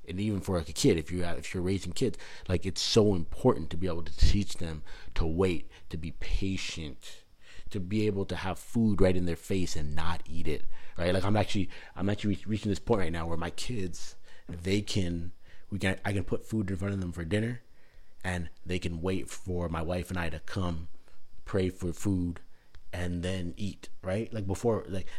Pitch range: 85-100 Hz